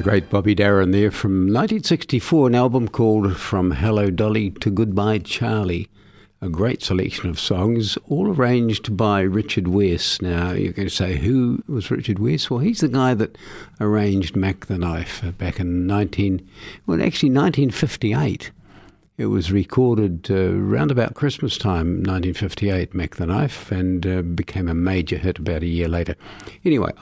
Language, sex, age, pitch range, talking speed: English, male, 60-79, 95-115 Hz, 160 wpm